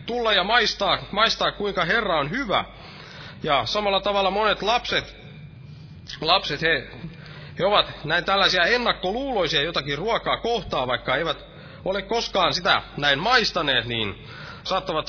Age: 30-49